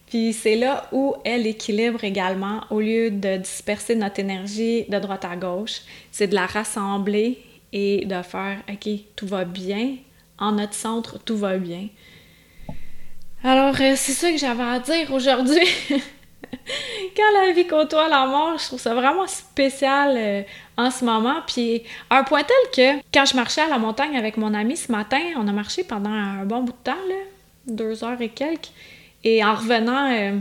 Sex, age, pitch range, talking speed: female, 20-39, 220-285 Hz, 180 wpm